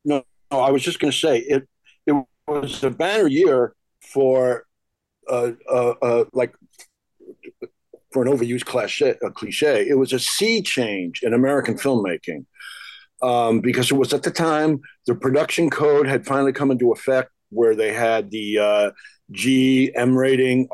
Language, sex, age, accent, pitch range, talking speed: English, male, 50-69, American, 125-155 Hz, 160 wpm